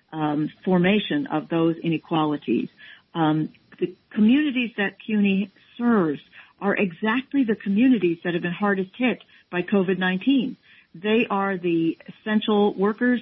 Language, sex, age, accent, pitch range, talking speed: English, female, 50-69, American, 175-230 Hz, 125 wpm